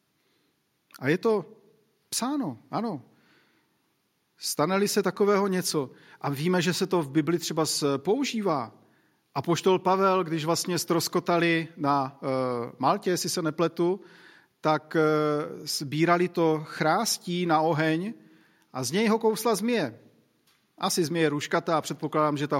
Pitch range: 145-185 Hz